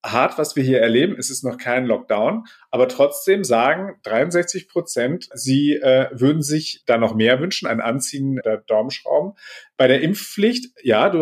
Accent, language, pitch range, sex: German, German, 125-155 Hz, male